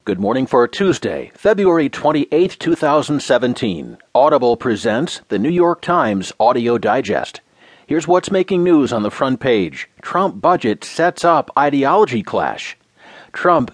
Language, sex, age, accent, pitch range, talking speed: English, male, 40-59, American, 115-165 Hz, 130 wpm